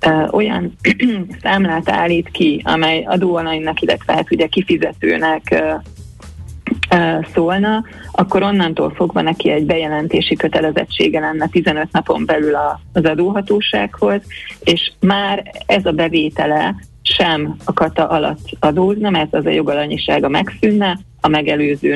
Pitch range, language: 145-180 Hz, Hungarian